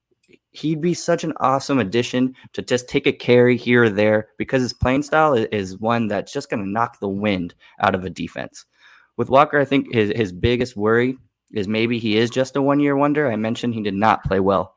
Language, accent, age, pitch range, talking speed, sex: English, American, 20-39, 105-125 Hz, 220 wpm, male